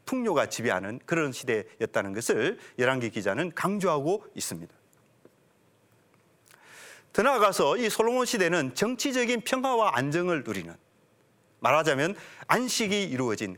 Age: 40-59